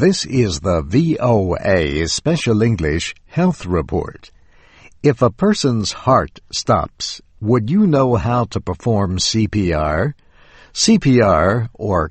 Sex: male